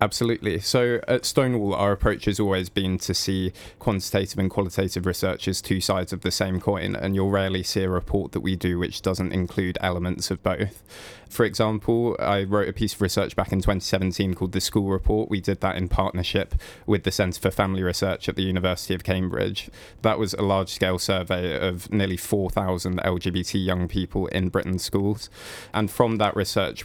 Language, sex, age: English, male, 20-39